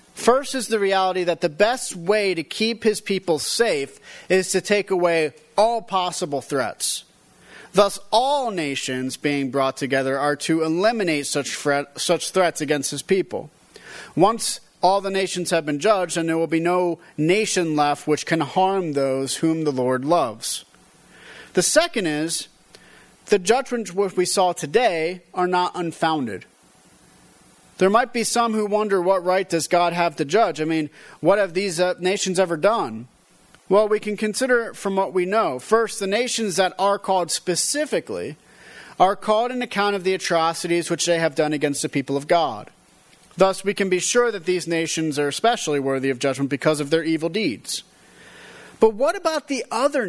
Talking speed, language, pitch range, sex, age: 175 wpm, English, 155-210 Hz, male, 40-59